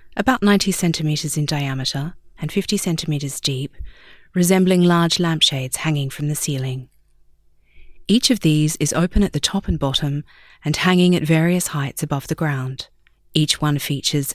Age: 30-49